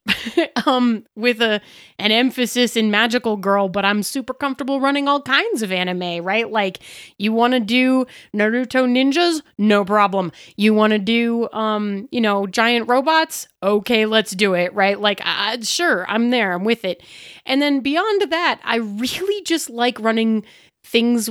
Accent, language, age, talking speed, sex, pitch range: American, English, 30-49, 170 wpm, female, 190-245 Hz